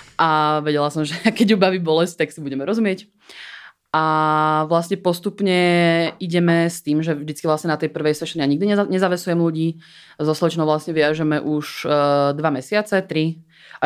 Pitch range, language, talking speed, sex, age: 150-170 Hz, Czech, 160 wpm, female, 20-39